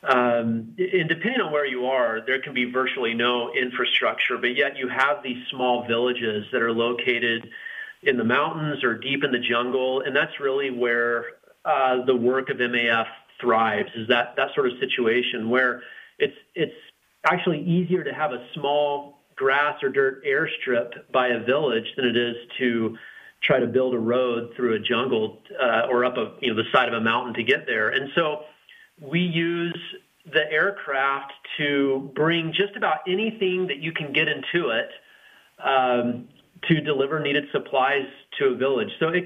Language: English